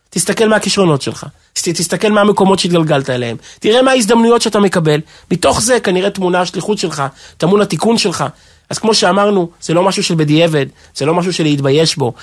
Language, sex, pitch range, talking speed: Hebrew, male, 160-215 Hz, 180 wpm